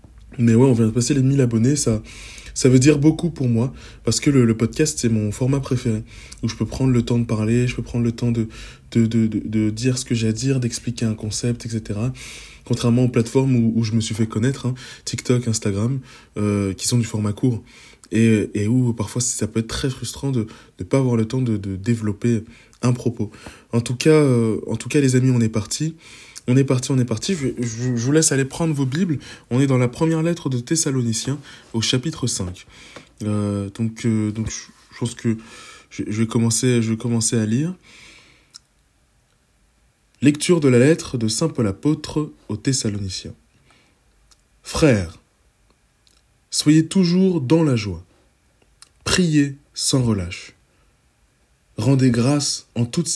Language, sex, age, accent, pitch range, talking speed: French, male, 20-39, French, 110-135 Hz, 190 wpm